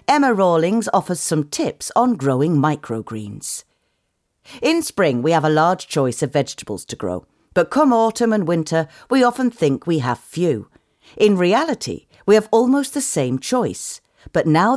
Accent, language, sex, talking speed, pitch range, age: British, English, female, 165 wpm, 130-200 Hz, 40-59